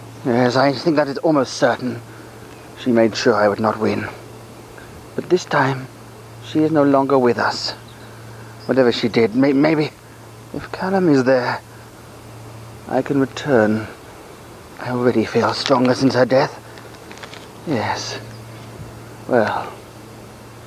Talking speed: 125 wpm